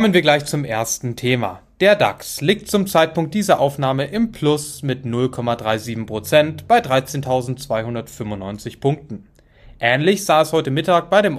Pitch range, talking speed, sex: 120-160 Hz, 140 wpm, male